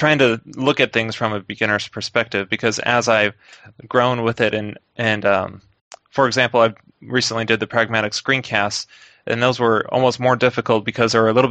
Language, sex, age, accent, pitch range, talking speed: English, male, 20-39, American, 105-120 Hz, 190 wpm